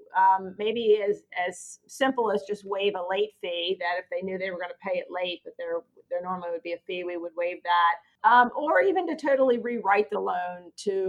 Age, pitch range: 40-59, 180-225 Hz